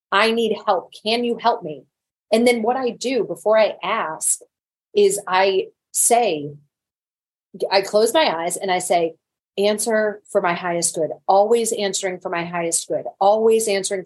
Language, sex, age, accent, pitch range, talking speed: English, female, 30-49, American, 190-245 Hz, 160 wpm